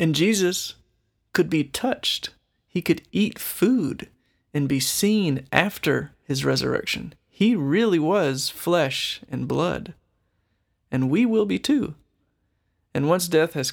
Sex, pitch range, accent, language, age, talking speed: male, 120-165 Hz, American, English, 30-49, 130 wpm